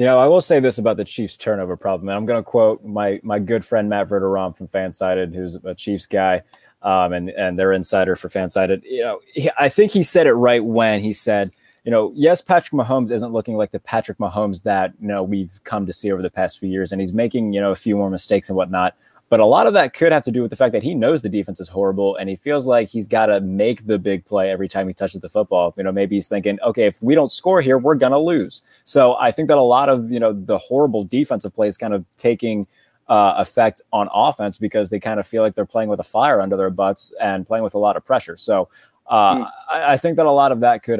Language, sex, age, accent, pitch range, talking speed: English, male, 20-39, American, 95-115 Hz, 270 wpm